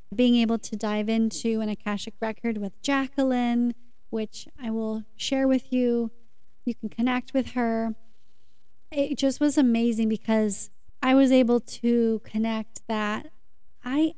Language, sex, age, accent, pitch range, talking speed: English, female, 30-49, American, 220-260 Hz, 140 wpm